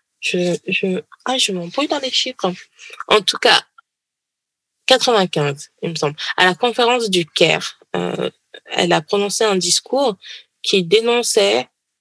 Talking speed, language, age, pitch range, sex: 140 wpm, English, 20-39, 175-240 Hz, female